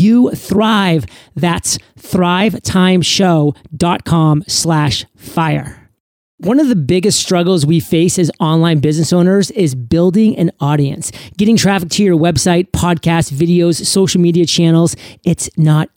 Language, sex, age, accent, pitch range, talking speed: English, male, 40-59, American, 155-185 Hz, 125 wpm